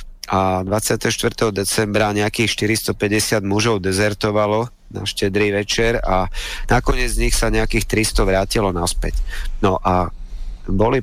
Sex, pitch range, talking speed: male, 100-110 Hz, 120 wpm